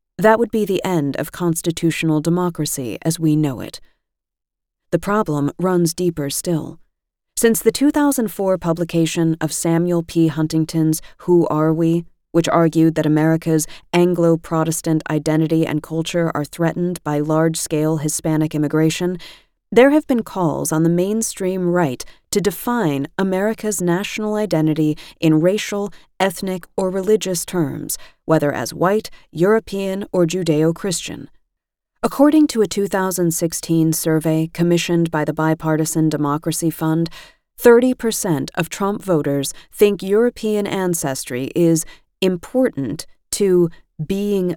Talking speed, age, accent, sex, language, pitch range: 120 wpm, 30-49, American, female, English, 155-190 Hz